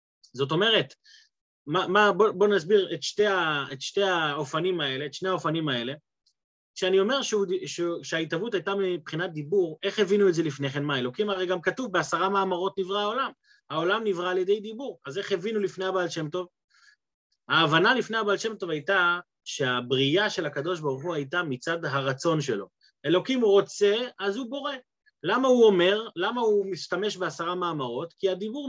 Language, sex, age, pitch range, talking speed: Hebrew, male, 30-49, 170-225 Hz, 165 wpm